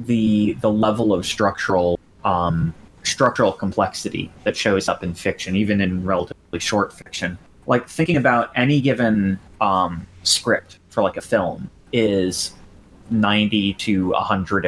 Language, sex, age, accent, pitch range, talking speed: English, male, 30-49, American, 95-115 Hz, 140 wpm